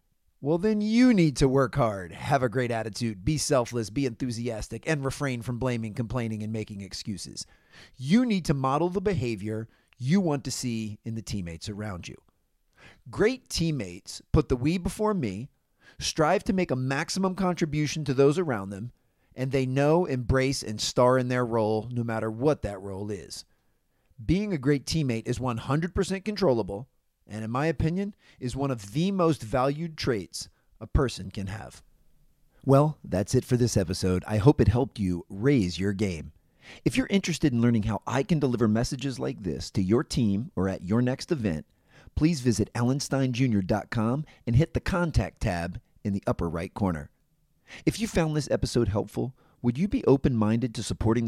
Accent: American